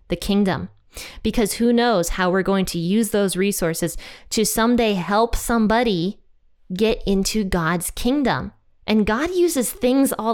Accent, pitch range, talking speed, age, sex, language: American, 180-235 Hz, 145 wpm, 20-39, female, English